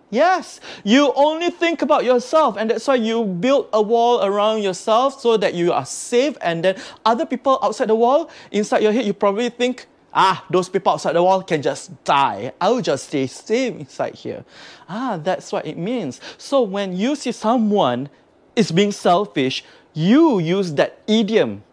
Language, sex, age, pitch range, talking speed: English, male, 30-49, 160-250 Hz, 180 wpm